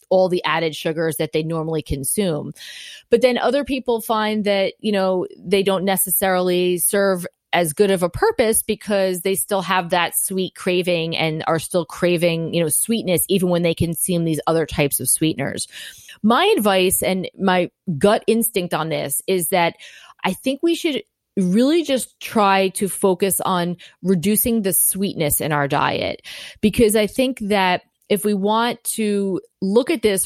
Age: 30-49